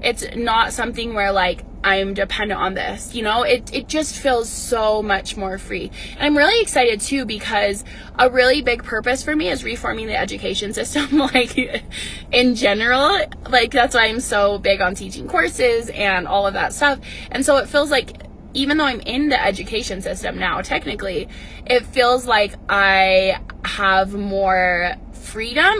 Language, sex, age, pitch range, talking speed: English, female, 20-39, 210-280 Hz, 170 wpm